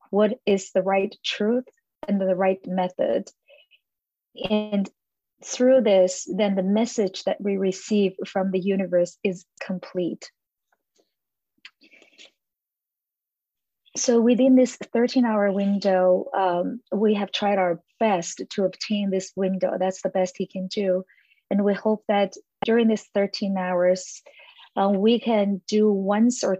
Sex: female